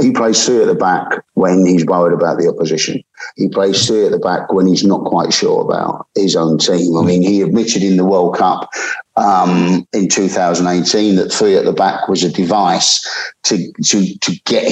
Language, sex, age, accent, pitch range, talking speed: English, male, 50-69, British, 95-120 Hz, 205 wpm